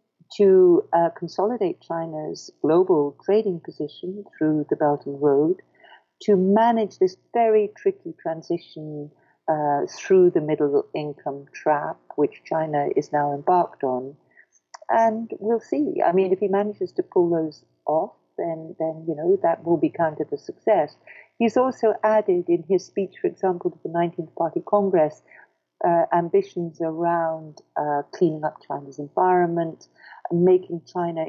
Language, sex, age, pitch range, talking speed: English, female, 50-69, 155-210 Hz, 145 wpm